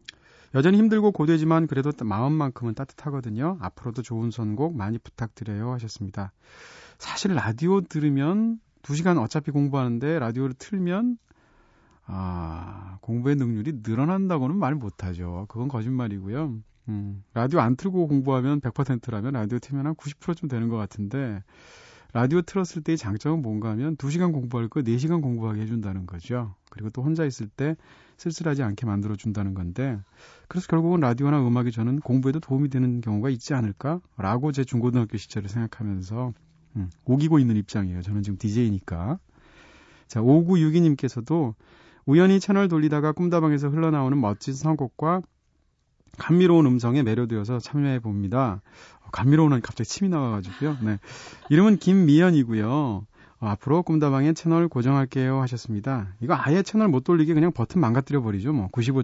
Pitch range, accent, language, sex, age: 110-155 Hz, native, Korean, male, 40-59